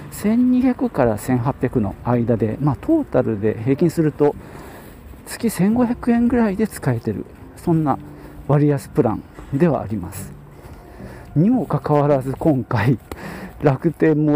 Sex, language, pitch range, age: male, Japanese, 115-165 Hz, 40-59